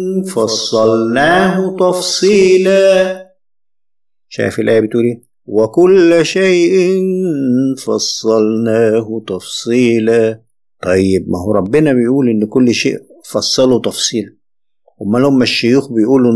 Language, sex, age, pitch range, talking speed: Arabic, male, 50-69, 115-165 Hz, 90 wpm